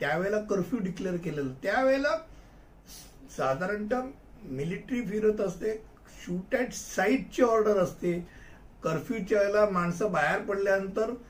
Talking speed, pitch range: 70 wpm, 170-220 Hz